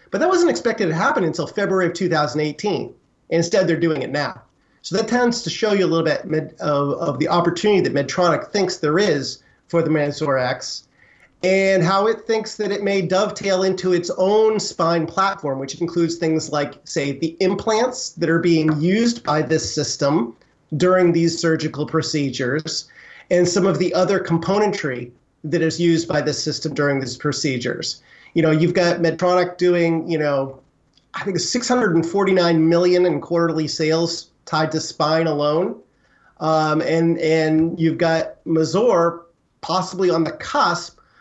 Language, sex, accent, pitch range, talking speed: English, male, American, 155-185 Hz, 160 wpm